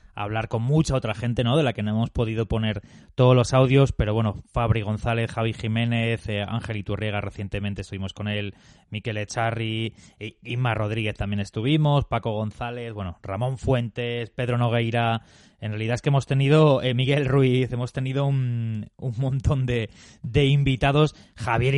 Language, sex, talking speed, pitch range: Spanish, male, 170 wpm, 105-125 Hz